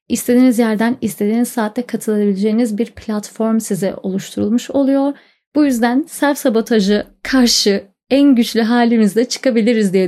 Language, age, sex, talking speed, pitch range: Turkish, 30-49, female, 115 wpm, 200-255 Hz